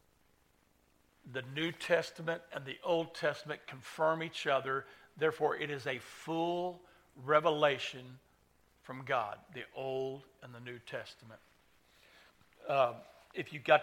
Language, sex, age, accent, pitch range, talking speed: English, male, 60-79, American, 125-145 Hz, 120 wpm